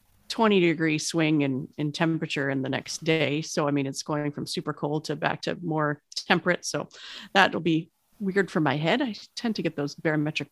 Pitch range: 160-205 Hz